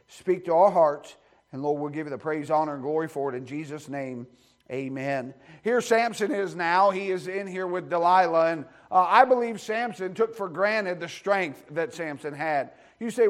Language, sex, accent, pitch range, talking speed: English, male, American, 185-230 Hz, 205 wpm